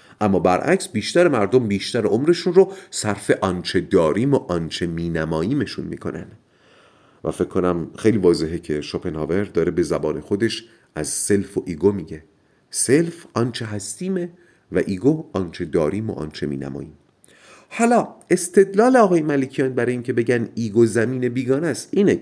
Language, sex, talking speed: Persian, male, 140 wpm